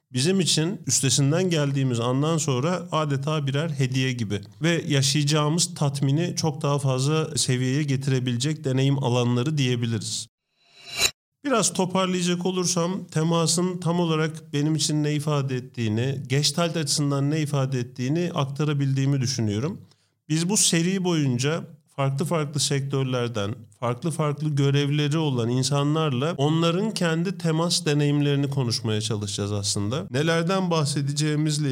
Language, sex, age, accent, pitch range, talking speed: Turkish, male, 40-59, native, 130-160 Hz, 115 wpm